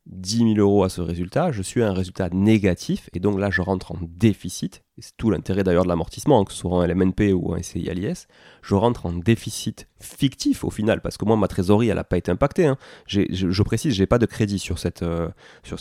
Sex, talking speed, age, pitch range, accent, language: male, 245 wpm, 30-49, 90-115 Hz, French, French